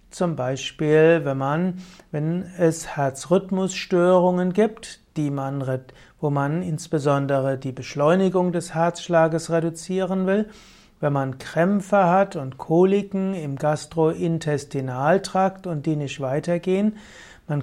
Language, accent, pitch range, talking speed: German, German, 145-180 Hz, 110 wpm